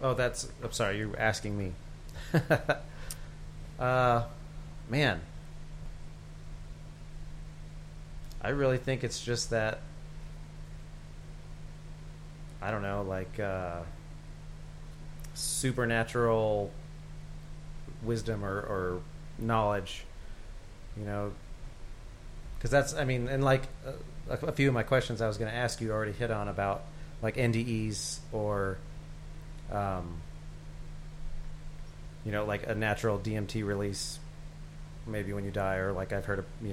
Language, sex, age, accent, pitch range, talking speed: English, male, 30-49, American, 95-120 Hz, 115 wpm